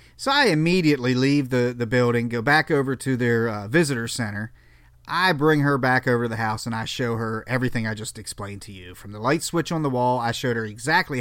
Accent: American